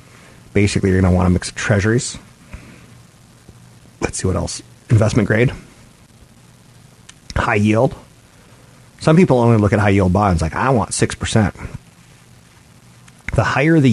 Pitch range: 90-120 Hz